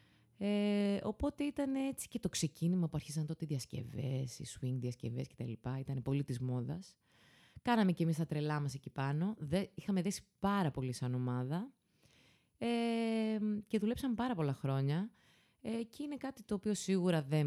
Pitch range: 140-200 Hz